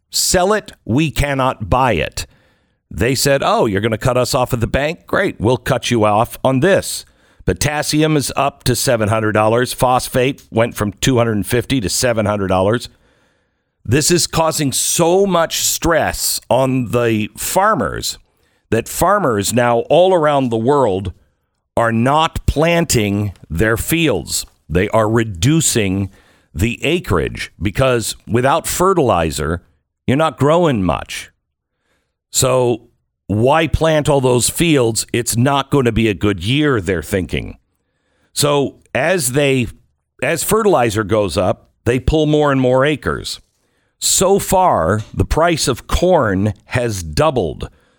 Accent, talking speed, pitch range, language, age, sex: American, 145 wpm, 105-145 Hz, English, 60-79, male